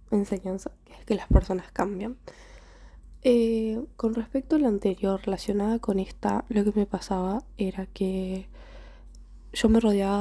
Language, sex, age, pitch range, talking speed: Spanish, female, 10-29, 185-215 Hz, 135 wpm